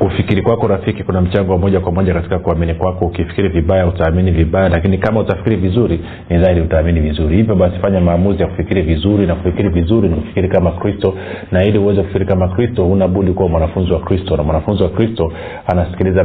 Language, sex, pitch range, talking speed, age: Swahili, male, 90-105 Hz, 195 wpm, 40-59